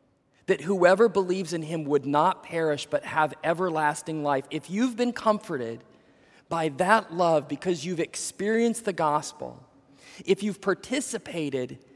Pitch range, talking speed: 160-215 Hz, 135 wpm